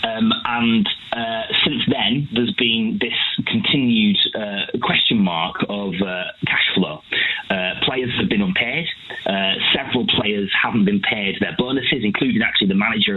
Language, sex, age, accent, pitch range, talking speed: English, male, 30-49, British, 100-160 Hz, 150 wpm